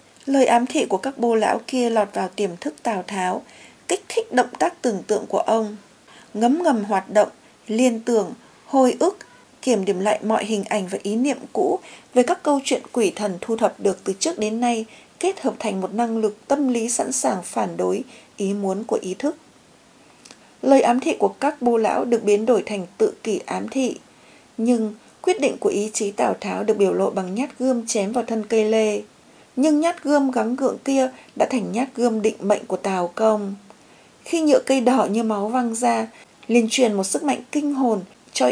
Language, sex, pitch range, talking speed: Vietnamese, female, 210-255 Hz, 210 wpm